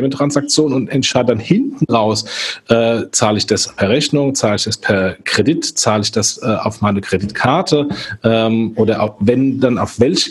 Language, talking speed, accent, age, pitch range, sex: German, 180 wpm, German, 40-59, 115-140 Hz, male